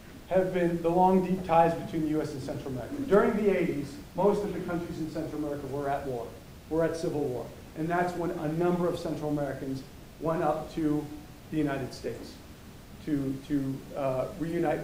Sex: male